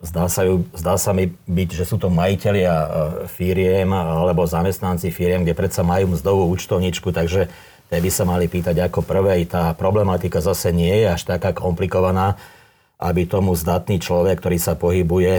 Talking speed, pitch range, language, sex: 170 wpm, 85-95 Hz, Slovak, male